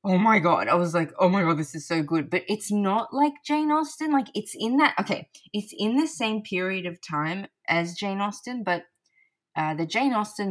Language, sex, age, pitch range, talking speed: English, female, 20-39, 155-190 Hz, 225 wpm